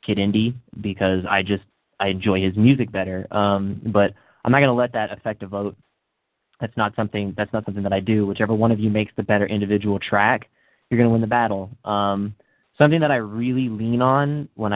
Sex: male